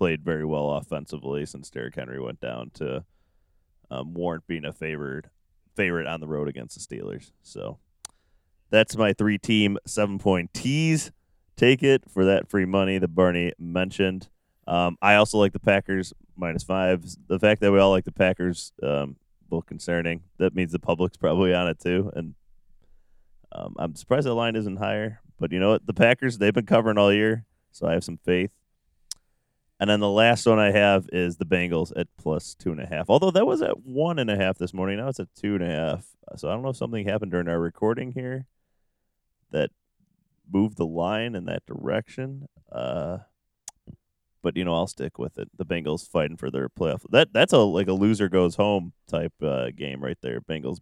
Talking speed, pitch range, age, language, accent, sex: 195 wpm, 85-105 Hz, 20-39, English, American, male